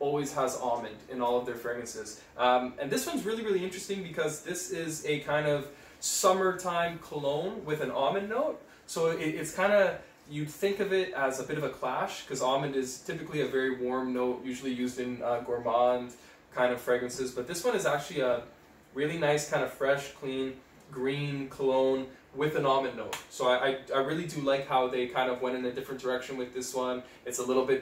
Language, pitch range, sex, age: English, 125-155 Hz, male, 20-39